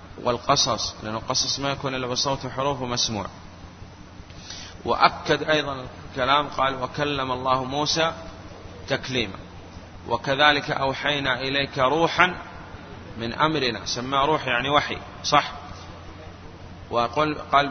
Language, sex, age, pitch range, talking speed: Arabic, male, 30-49, 95-135 Hz, 100 wpm